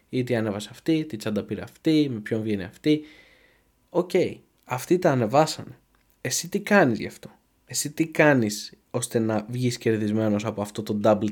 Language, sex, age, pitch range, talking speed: Greek, male, 20-39, 110-160 Hz, 175 wpm